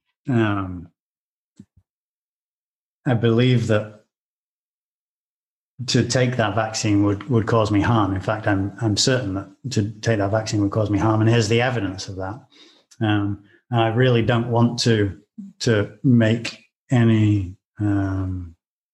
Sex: male